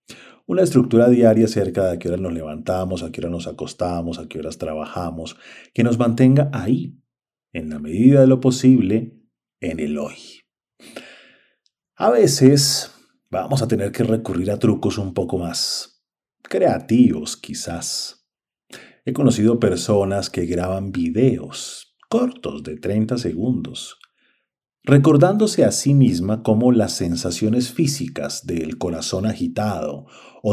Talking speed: 135 wpm